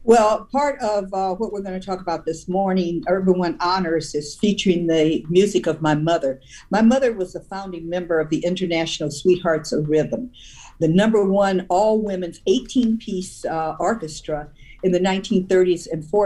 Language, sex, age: English, female, 50-69